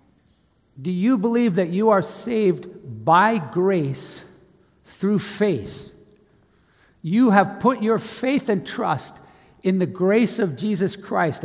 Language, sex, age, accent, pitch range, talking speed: English, male, 60-79, American, 160-205 Hz, 125 wpm